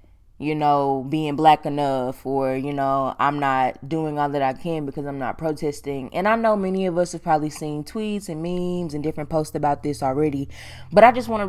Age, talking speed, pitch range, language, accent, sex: 20-39, 220 wpm, 140-165 Hz, English, American, female